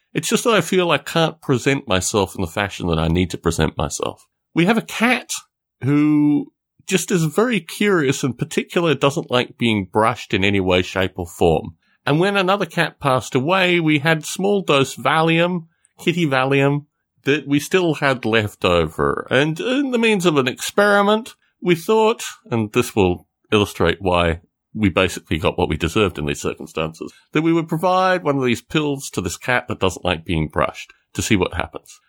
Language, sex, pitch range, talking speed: English, male, 100-160 Hz, 190 wpm